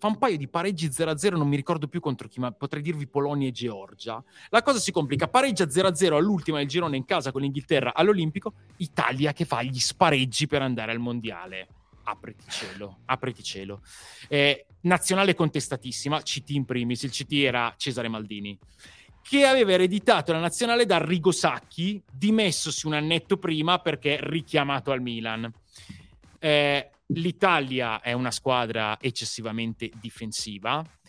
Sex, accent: male, native